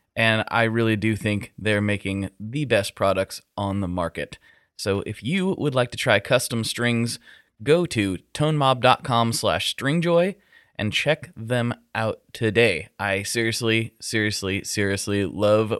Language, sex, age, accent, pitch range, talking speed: English, male, 20-39, American, 100-130 Hz, 140 wpm